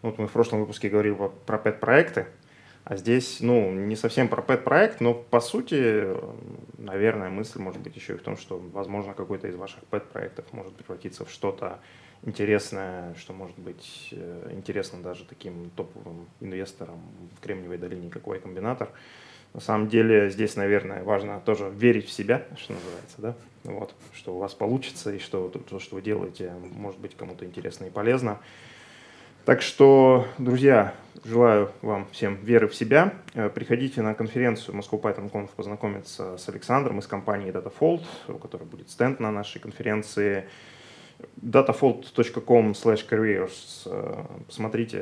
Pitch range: 95-120 Hz